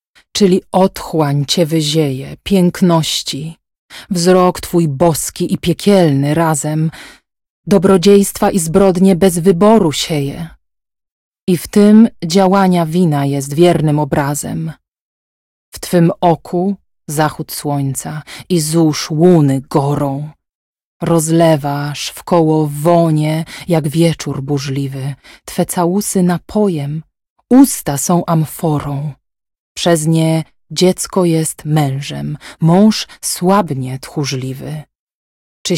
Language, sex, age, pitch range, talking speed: Polish, female, 30-49, 145-180 Hz, 95 wpm